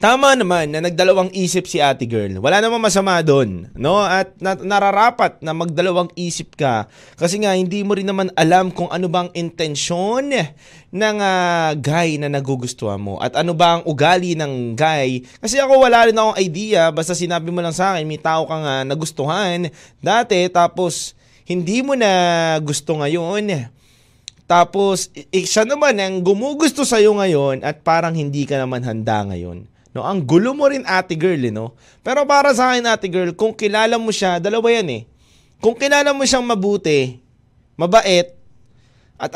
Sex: male